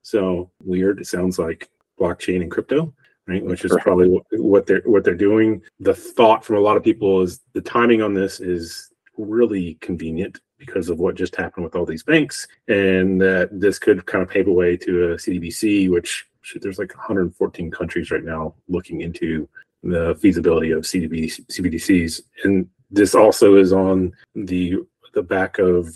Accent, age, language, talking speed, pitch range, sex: American, 30-49, English, 175 wpm, 85-110 Hz, male